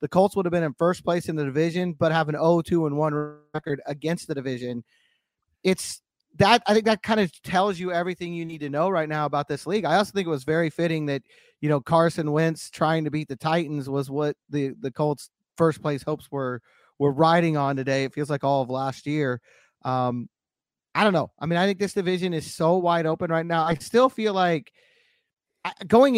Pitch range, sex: 150-180 Hz, male